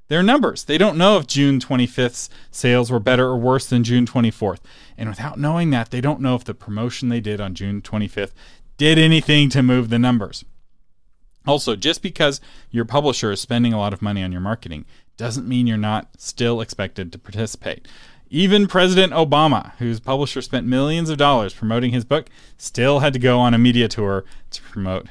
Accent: American